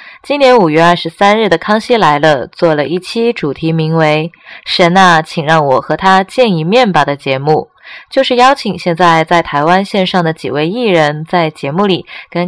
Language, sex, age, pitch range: Chinese, female, 20-39, 160-205 Hz